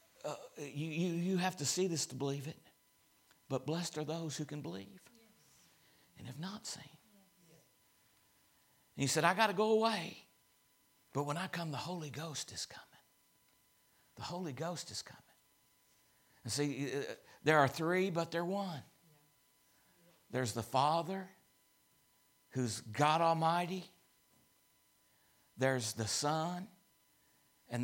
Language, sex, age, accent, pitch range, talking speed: English, male, 60-79, American, 130-170 Hz, 135 wpm